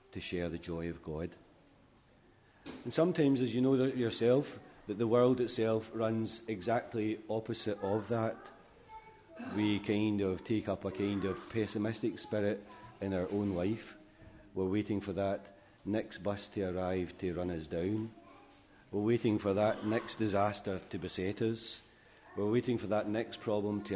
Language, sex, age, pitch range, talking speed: English, male, 40-59, 100-120 Hz, 160 wpm